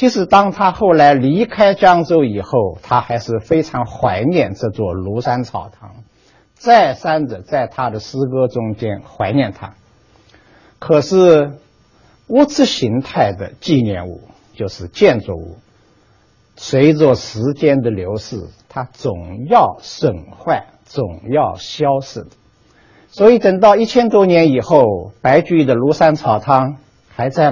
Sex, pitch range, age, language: male, 115-170 Hz, 60-79, Chinese